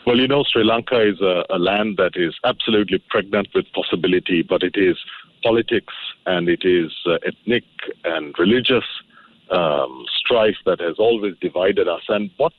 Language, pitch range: English, 105-165 Hz